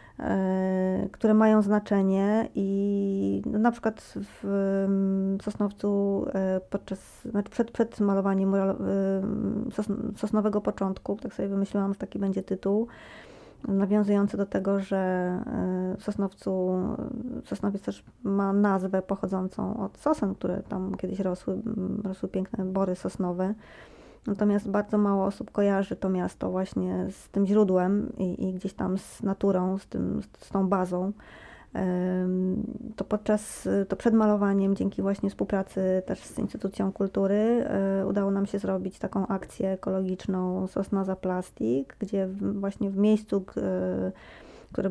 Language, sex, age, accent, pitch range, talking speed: Polish, female, 20-39, native, 190-205 Hz, 125 wpm